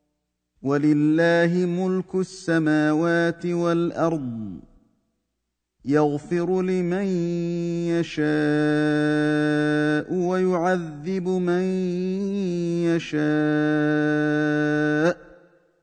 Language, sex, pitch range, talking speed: Arabic, male, 150-175 Hz, 40 wpm